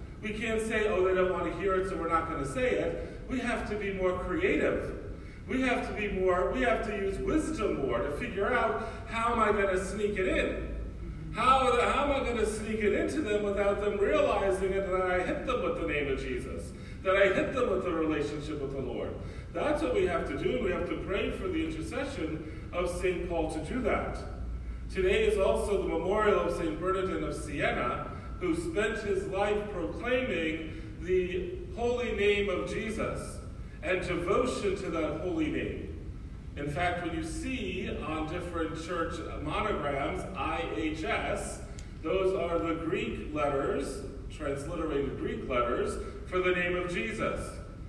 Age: 40-59